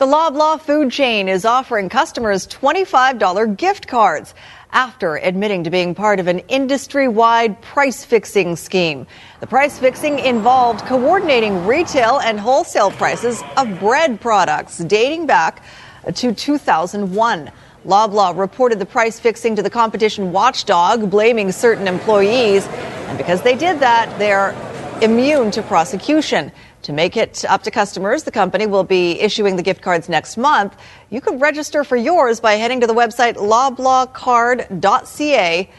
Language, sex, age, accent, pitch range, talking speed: English, female, 40-59, American, 200-260 Hz, 140 wpm